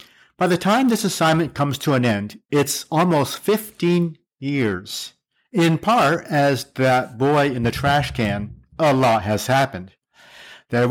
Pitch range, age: 125-165 Hz, 50-69